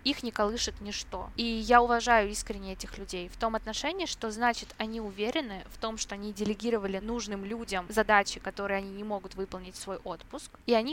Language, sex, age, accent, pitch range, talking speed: Russian, female, 20-39, native, 200-235 Hz, 190 wpm